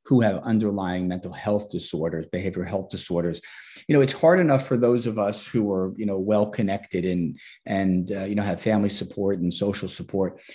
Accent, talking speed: American, 195 wpm